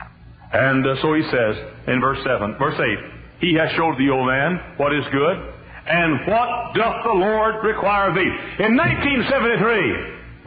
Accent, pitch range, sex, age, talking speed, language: American, 135-215 Hz, male, 60-79, 165 wpm, English